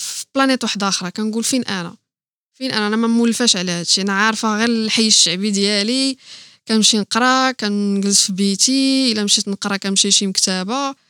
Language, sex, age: Arabic, female, 20-39